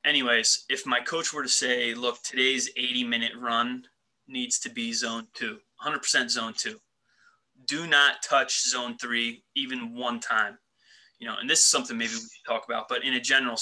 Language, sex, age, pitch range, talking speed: English, male, 20-39, 115-135 Hz, 190 wpm